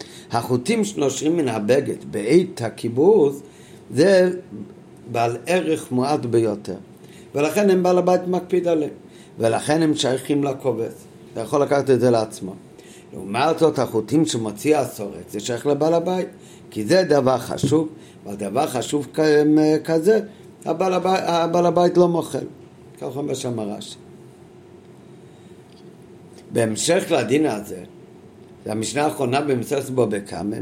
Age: 50-69